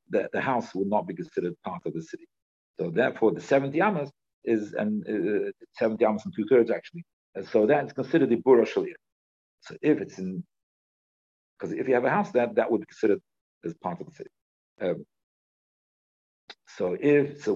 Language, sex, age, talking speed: English, male, 50-69, 190 wpm